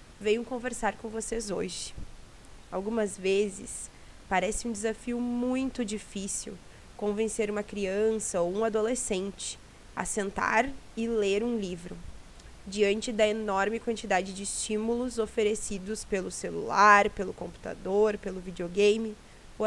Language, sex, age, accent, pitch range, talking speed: Portuguese, female, 20-39, Brazilian, 195-230 Hz, 115 wpm